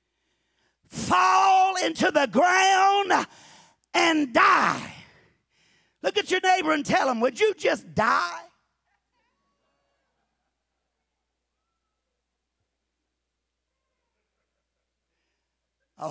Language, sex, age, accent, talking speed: English, male, 50-69, American, 65 wpm